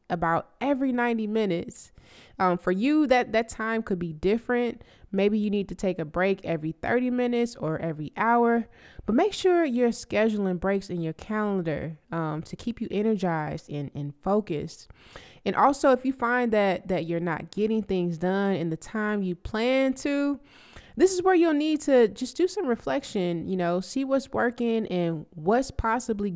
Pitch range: 180-235 Hz